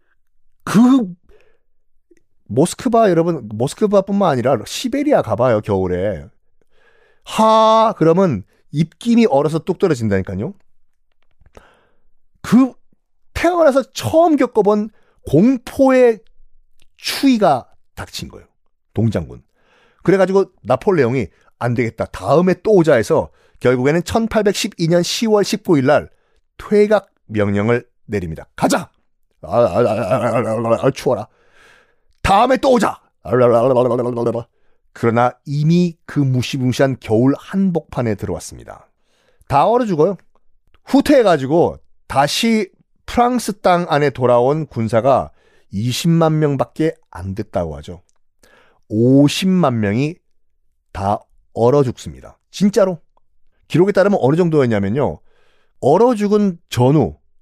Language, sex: Korean, male